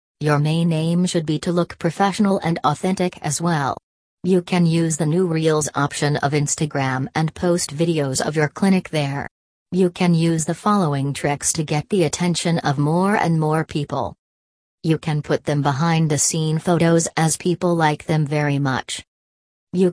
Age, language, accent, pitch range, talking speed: 40-59, English, American, 145-180 Hz, 175 wpm